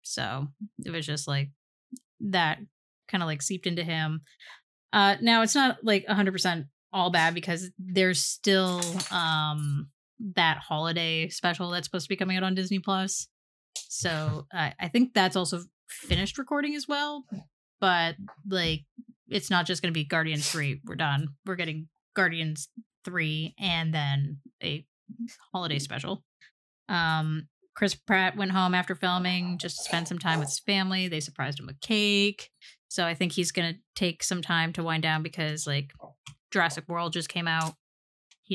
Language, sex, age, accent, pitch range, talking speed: English, female, 20-39, American, 160-195 Hz, 170 wpm